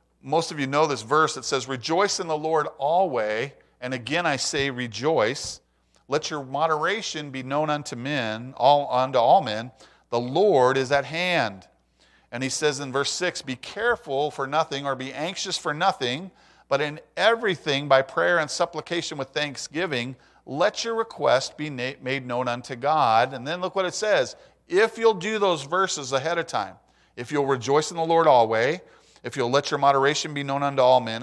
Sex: male